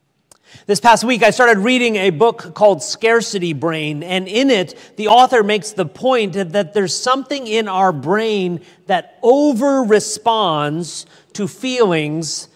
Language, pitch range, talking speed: English, 180-230 Hz, 140 wpm